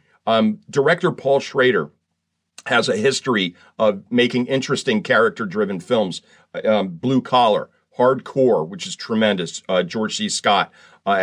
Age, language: 40-59, English